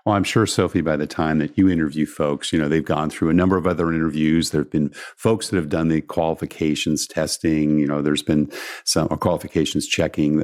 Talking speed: 220 wpm